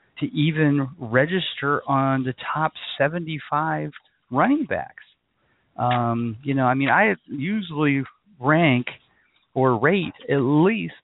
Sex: male